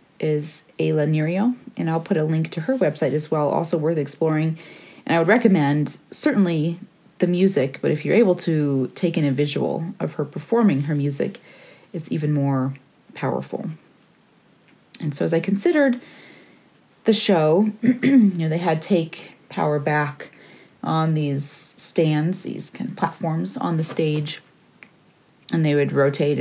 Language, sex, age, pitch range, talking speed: English, female, 30-49, 150-195 Hz, 155 wpm